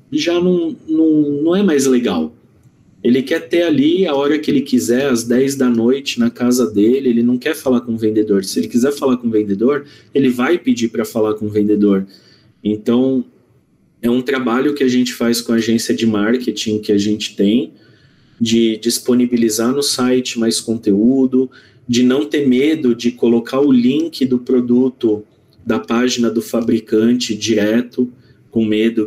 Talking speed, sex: 175 wpm, male